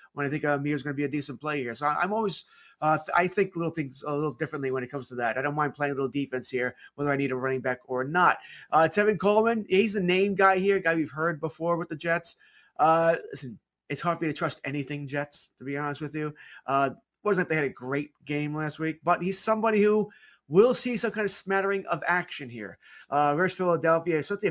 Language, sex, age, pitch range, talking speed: English, male, 30-49, 145-185 Hz, 245 wpm